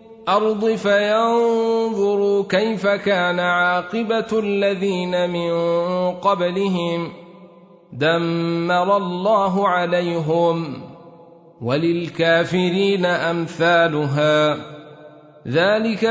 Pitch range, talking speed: 175-230 Hz, 50 wpm